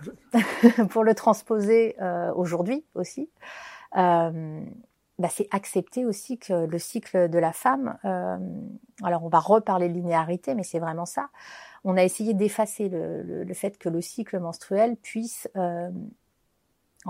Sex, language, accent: female, French, French